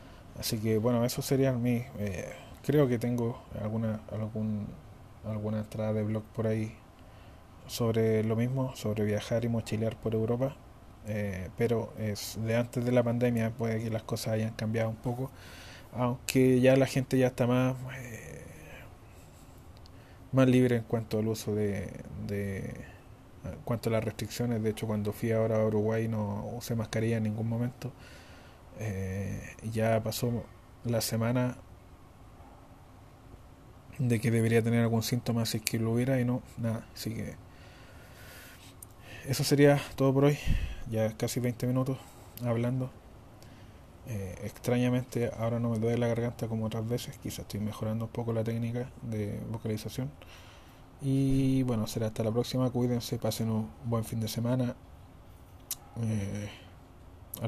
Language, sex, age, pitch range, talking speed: Spanish, male, 20-39, 105-120 Hz, 150 wpm